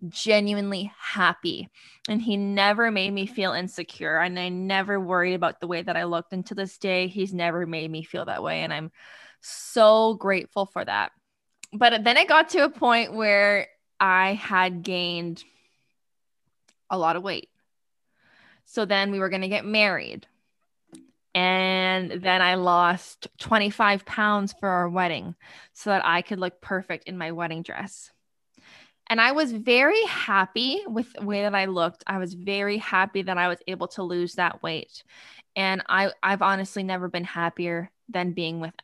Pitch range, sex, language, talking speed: 175-205 Hz, female, English, 170 wpm